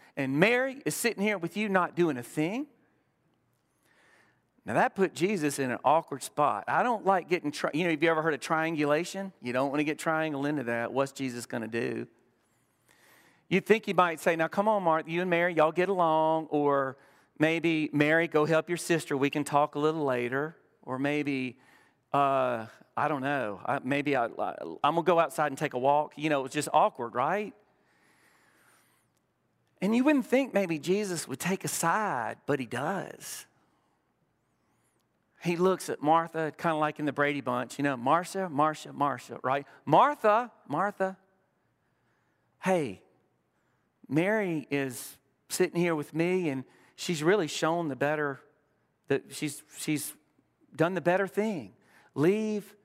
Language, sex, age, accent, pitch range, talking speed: English, male, 40-59, American, 140-180 Hz, 175 wpm